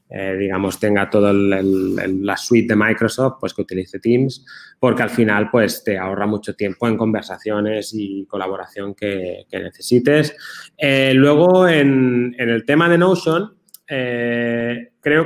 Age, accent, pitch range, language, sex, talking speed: 20-39, Spanish, 110-145 Hz, Spanish, male, 145 wpm